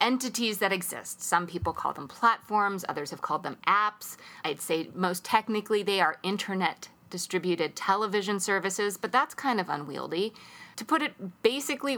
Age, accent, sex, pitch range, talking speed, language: 30-49, American, female, 165-220 Hz, 160 wpm, English